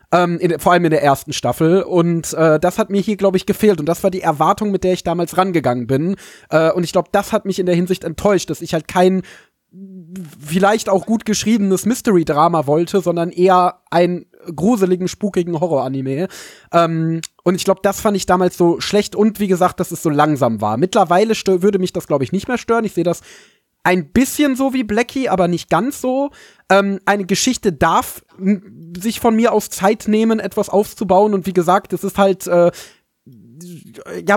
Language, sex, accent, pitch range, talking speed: German, male, German, 175-205 Hz, 205 wpm